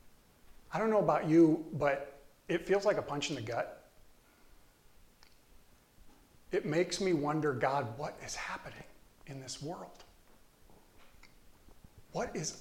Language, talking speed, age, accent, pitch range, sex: English, 130 wpm, 40-59, American, 155-205 Hz, male